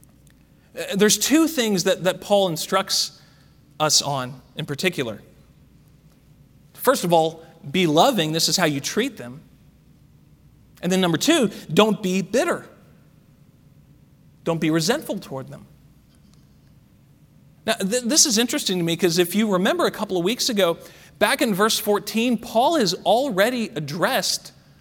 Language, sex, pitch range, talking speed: English, male, 165-255 Hz, 140 wpm